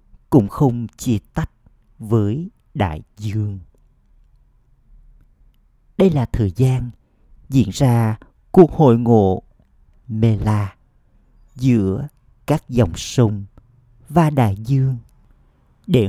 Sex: male